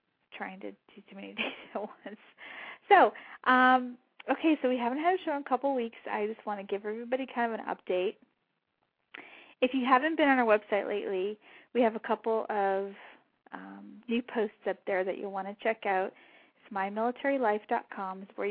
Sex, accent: female, American